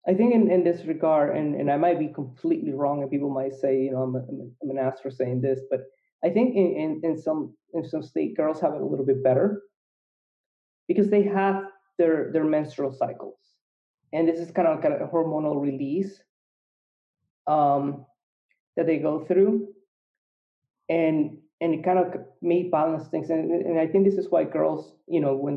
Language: English